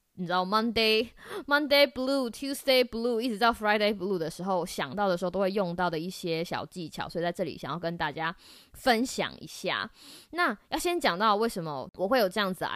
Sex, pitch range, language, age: female, 180-260 Hz, Chinese, 20-39